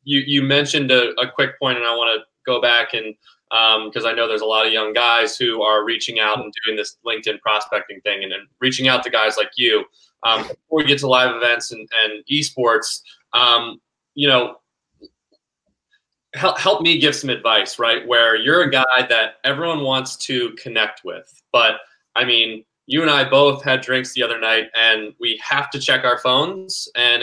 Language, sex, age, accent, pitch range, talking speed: English, male, 20-39, American, 115-140 Hz, 205 wpm